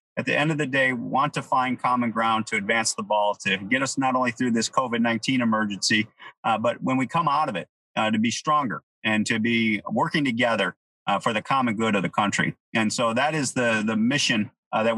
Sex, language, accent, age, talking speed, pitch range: male, English, American, 40-59, 235 wpm, 115-135 Hz